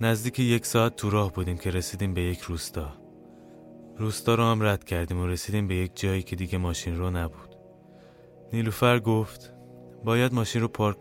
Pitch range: 85-105 Hz